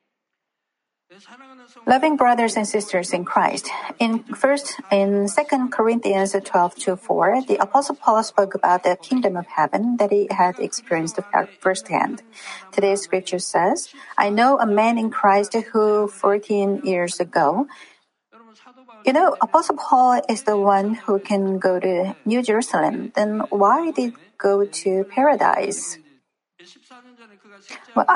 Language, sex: Korean, female